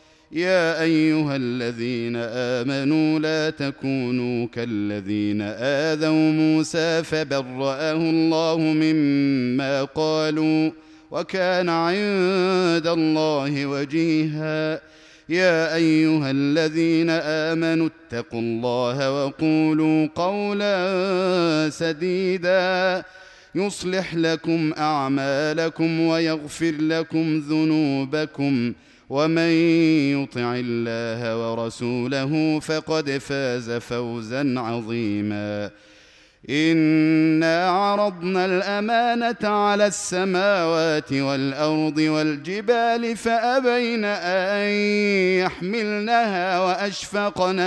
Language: Arabic